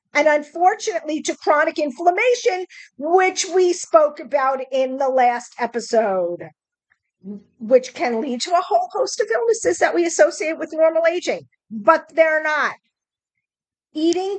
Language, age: English, 50-69